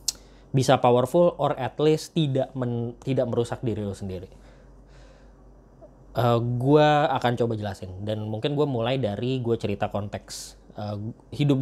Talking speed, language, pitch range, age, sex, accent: 140 wpm, Indonesian, 105-130 Hz, 20-39, male, native